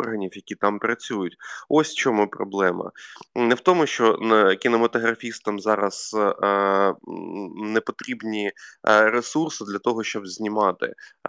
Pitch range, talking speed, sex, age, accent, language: 100-120 Hz, 110 wpm, male, 20-39, native, Ukrainian